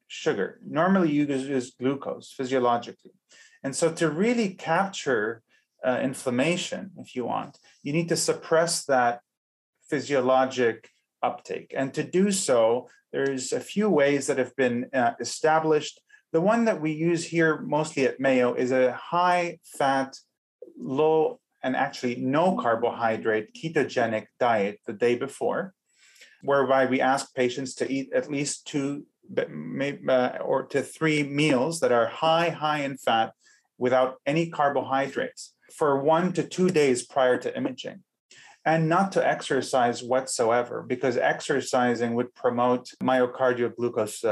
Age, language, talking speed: 30-49, English, 135 wpm